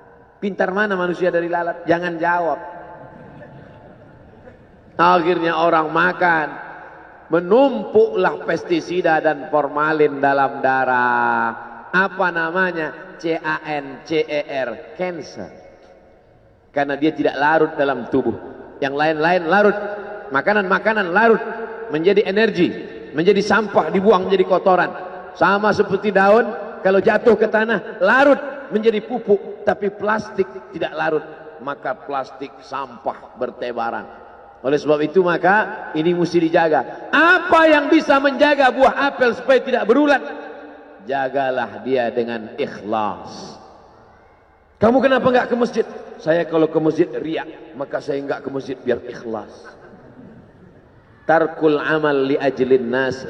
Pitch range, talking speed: 140-210 Hz, 110 wpm